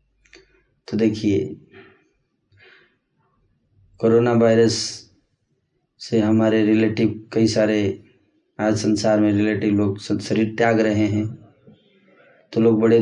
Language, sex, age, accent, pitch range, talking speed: Hindi, male, 20-39, native, 105-120 Hz, 95 wpm